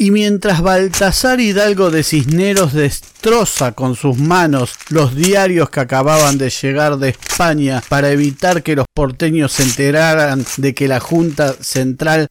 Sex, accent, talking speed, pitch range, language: male, Argentinian, 145 wpm, 130-170 Hz, Spanish